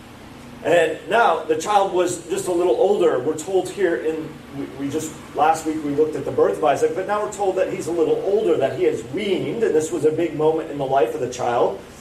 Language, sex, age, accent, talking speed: English, male, 40-59, American, 250 wpm